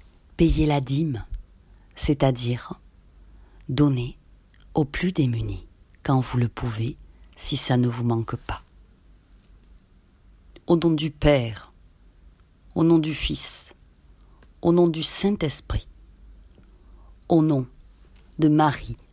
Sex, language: female, French